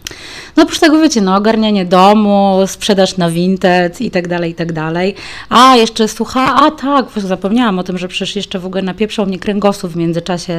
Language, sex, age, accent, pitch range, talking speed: Polish, female, 20-39, native, 175-200 Hz, 180 wpm